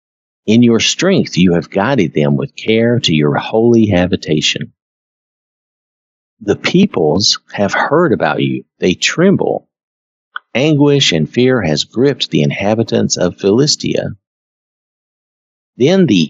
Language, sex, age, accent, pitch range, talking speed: English, male, 50-69, American, 80-115 Hz, 120 wpm